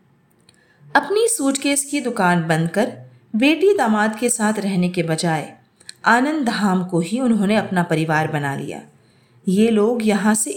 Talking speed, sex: 150 wpm, female